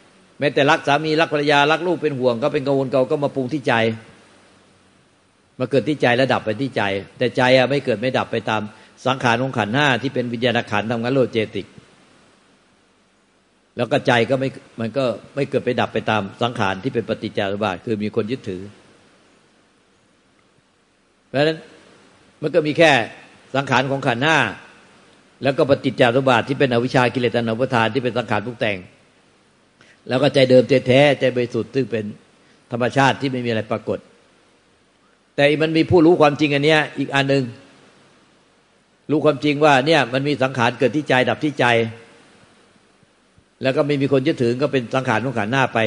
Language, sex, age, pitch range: Thai, male, 60-79, 115-145 Hz